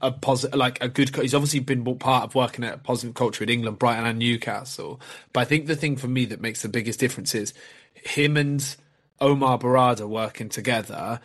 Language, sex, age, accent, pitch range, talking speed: English, male, 20-39, British, 115-140 Hz, 210 wpm